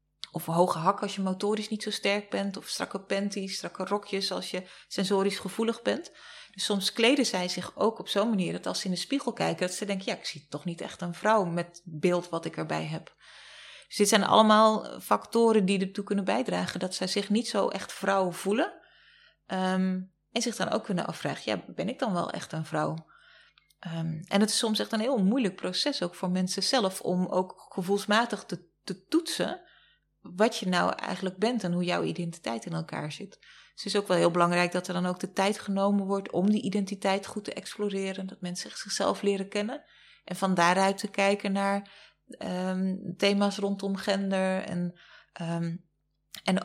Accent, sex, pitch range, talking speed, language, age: Dutch, female, 175-205 Hz, 200 wpm, Dutch, 30-49